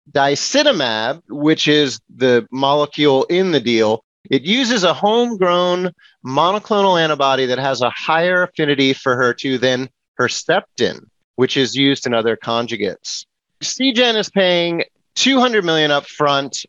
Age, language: 30-49, English